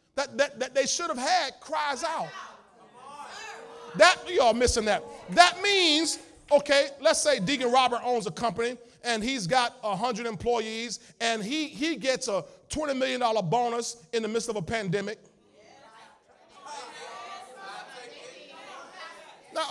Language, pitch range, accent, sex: English, 185-260 Hz, American, male